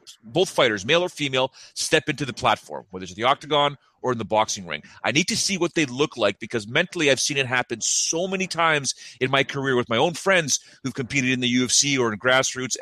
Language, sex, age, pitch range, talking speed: English, male, 30-49, 125-165 Hz, 235 wpm